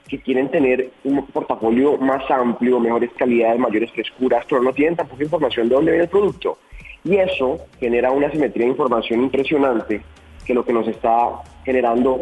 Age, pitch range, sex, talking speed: 30-49, 115-145 Hz, male, 170 wpm